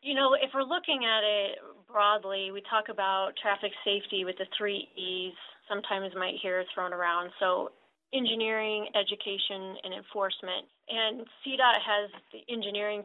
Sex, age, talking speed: female, 30-49, 145 wpm